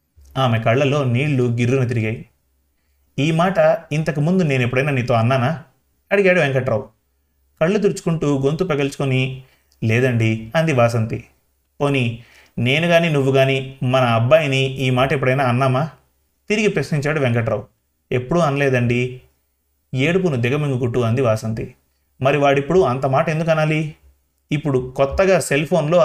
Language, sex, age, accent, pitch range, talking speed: Telugu, male, 30-49, native, 120-150 Hz, 115 wpm